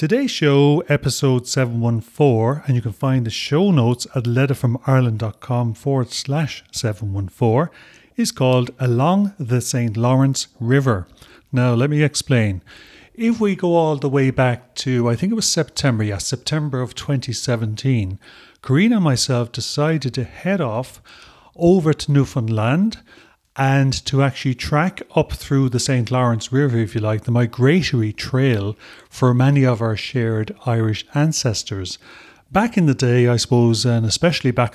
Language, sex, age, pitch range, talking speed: English, male, 40-59, 115-140 Hz, 150 wpm